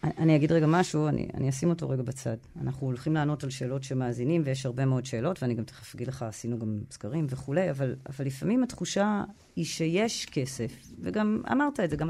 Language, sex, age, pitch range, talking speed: Hebrew, female, 30-49, 135-185 Hz, 200 wpm